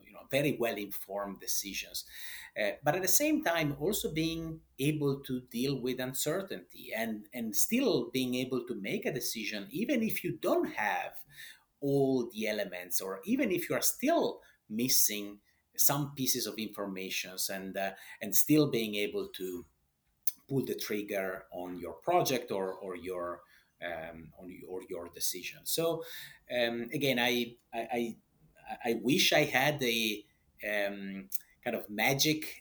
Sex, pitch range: male, 100-135 Hz